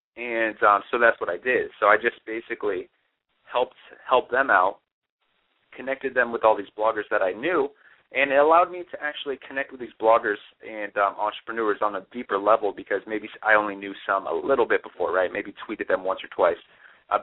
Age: 30-49